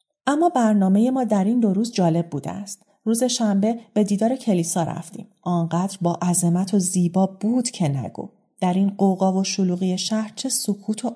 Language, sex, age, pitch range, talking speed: Persian, female, 30-49, 175-210 Hz, 175 wpm